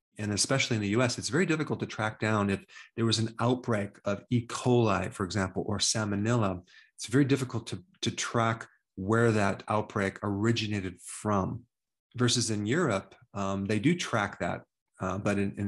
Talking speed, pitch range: 175 wpm, 100-120 Hz